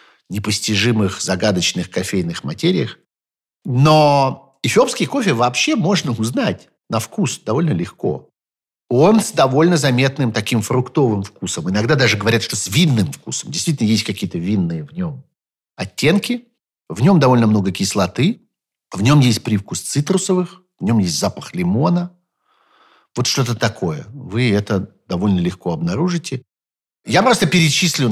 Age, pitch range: 50-69, 100-165 Hz